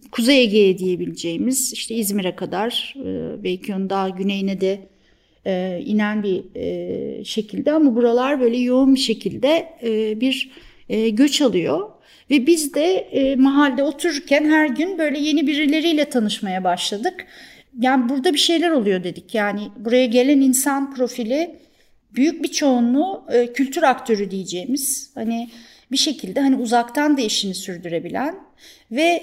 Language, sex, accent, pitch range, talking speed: Turkish, female, native, 200-270 Hz, 125 wpm